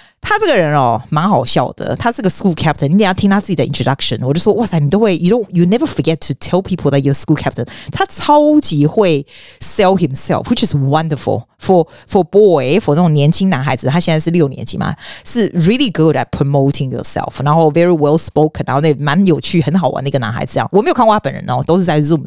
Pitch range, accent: 145-200 Hz, native